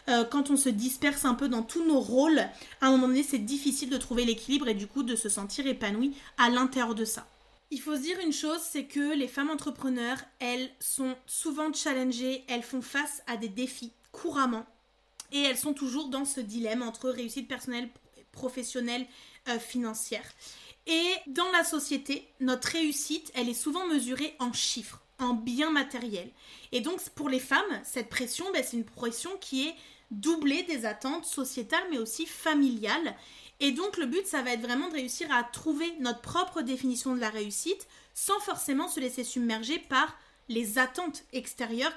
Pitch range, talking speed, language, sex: 245-300 Hz, 180 wpm, French, female